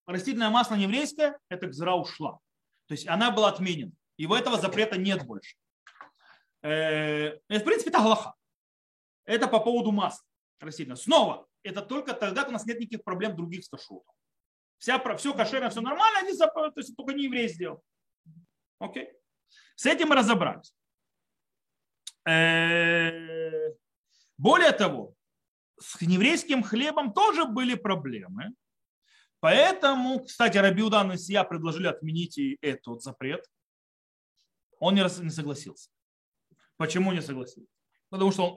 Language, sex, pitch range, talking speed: Russian, male, 150-230 Hz, 130 wpm